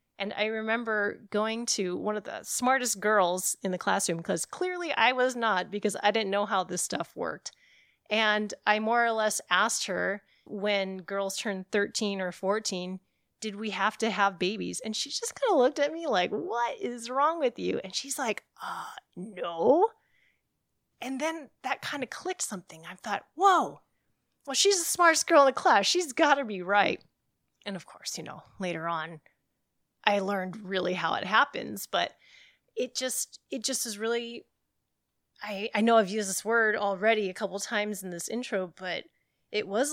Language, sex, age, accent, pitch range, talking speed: English, female, 30-49, American, 190-240 Hz, 190 wpm